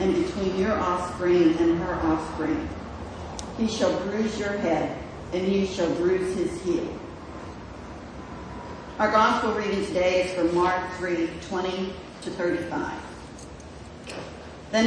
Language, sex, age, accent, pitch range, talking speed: English, female, 50-69, American, 185-225 Hz, 120 wpm